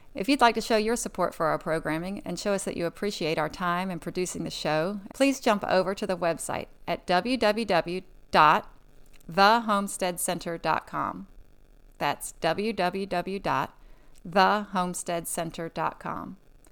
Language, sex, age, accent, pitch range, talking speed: English, female, 30-49, American, 175-215 Hz, 115 wpm